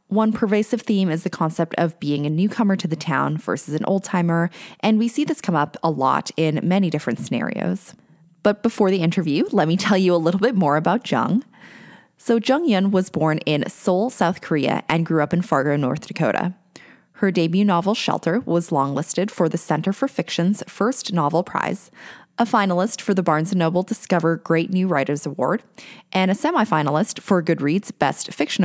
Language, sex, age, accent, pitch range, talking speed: English, female, 20-39, American, 160-210 Hz, 190 wpm